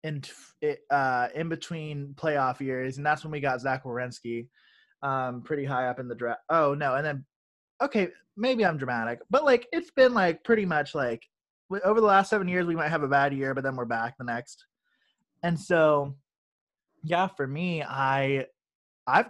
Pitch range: 130-180 Hz